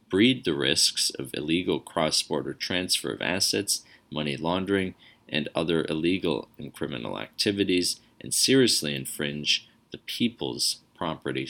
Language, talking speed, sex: English, 120 wpm, male